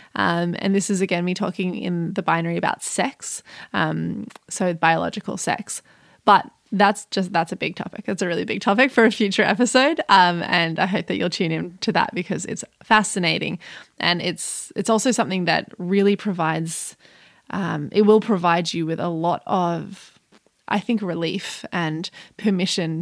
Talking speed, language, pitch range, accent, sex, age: 175 wpm, English, 180-225 Hz, Australian, female, 20-39